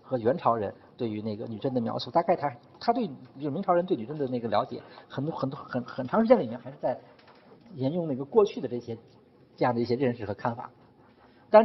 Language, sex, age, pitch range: Chinese, male, 50-69, 125-190 Hz